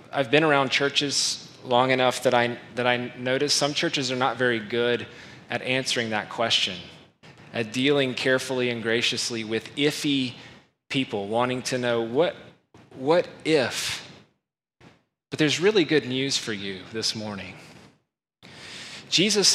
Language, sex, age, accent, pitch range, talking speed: English, male, 20-39, American, 120-155 Hz, 140 wpm